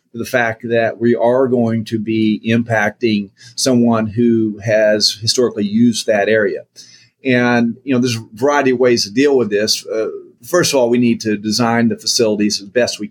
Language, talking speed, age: English, 190 wpm, 30-49